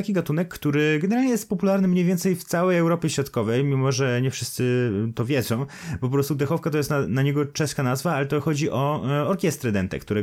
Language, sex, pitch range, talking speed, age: Polish, male, 110-155 Hz, 210 wpm, 20-39